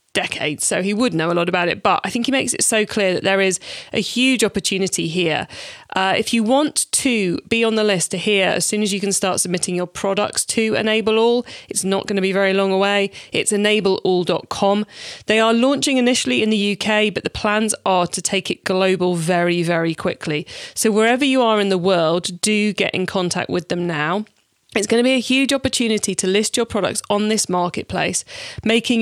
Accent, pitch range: British, 185-225 Hz